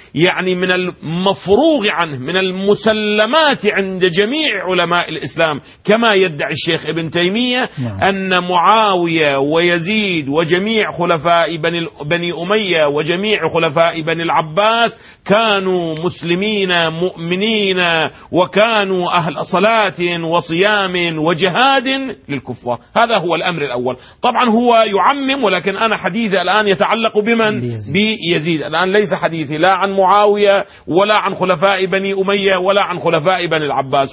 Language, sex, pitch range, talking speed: Arabic, male, 165-205 Hz, 115 wpm